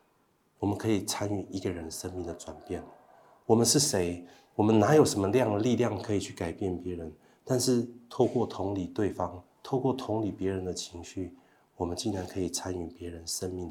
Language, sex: Chinese, male